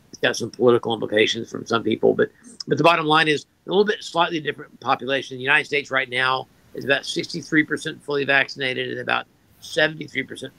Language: English